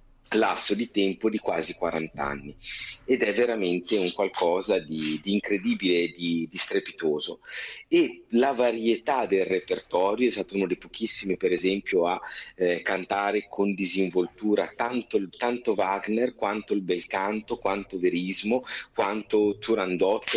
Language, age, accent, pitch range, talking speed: Italian, 40-59, native, 95-120 Hz, 135 wpm